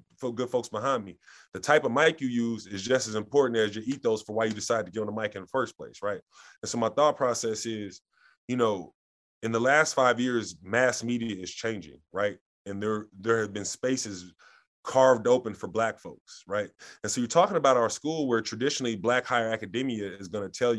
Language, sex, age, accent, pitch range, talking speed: English, male, 20-39, American, 110-130 Hz, 225 wpm